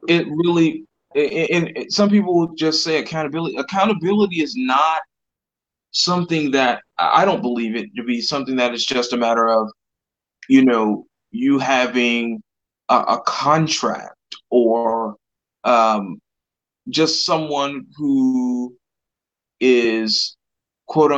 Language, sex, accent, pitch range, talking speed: English, male, American, 115-155 Hz, 110 wpm